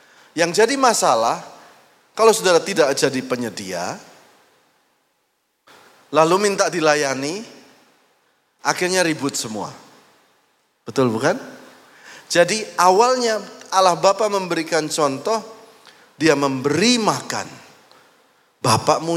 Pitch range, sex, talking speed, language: 125-195 Hz, male, 80 wpm, Indonesian